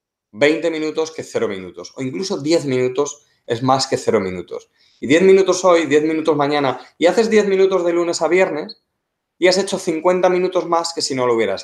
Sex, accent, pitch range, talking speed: male, Spanish, 125-170 Hz, 205 wpm